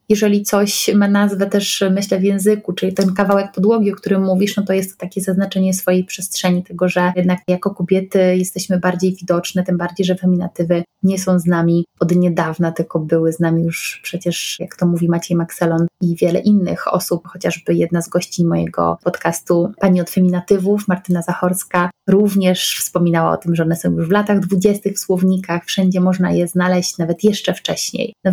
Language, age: Polish, 20-39